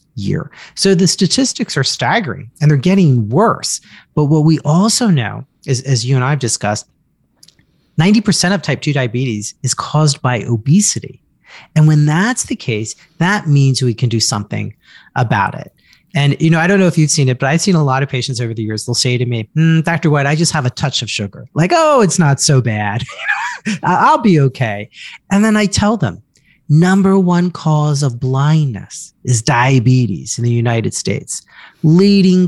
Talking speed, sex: 190 wpm, male